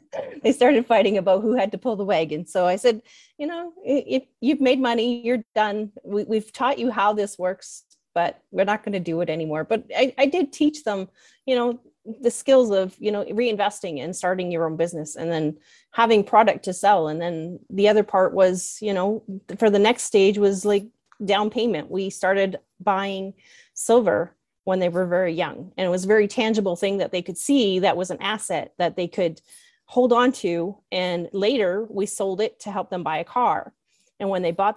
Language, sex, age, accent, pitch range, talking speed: English, female, 30-49, American, 180-225 Hz, 210 wpm